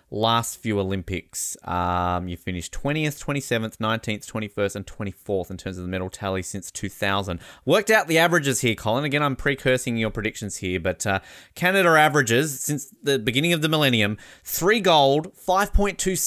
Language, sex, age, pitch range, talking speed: English, male, 20-39, 100-145 Hz, 165 wpm